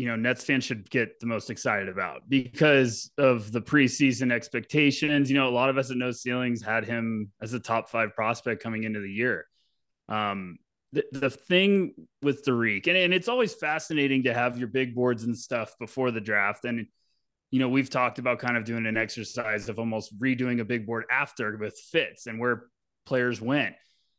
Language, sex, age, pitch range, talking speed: English, male, 20-39, 115-140 Hz, 200 wpm